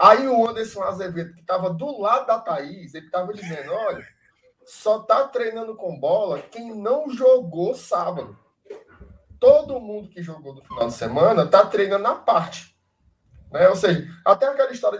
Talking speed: 165 wpm